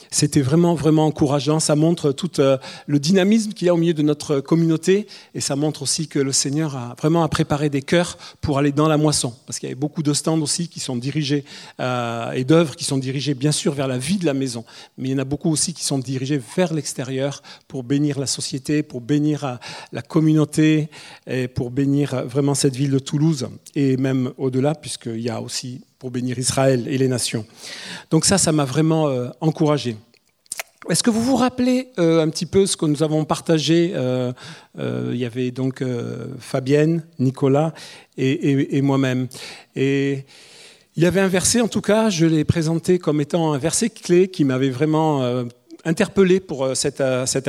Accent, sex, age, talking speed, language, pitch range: French, male, 40-59, 200 wpm, French, 135-165 Hz